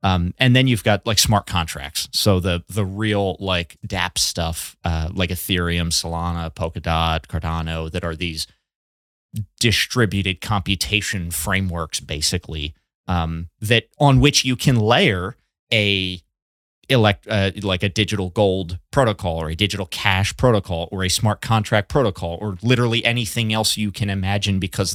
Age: 30-49